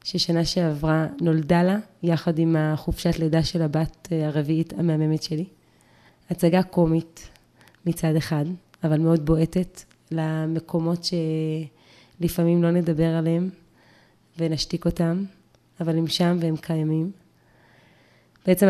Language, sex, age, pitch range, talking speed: Hebrew, female, 20-39, 160-180 Hz, 105 wpm